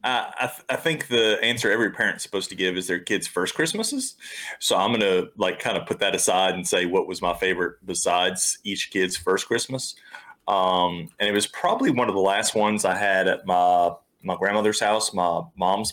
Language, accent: English, American